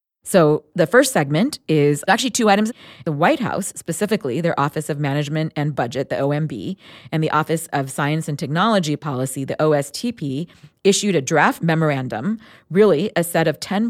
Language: English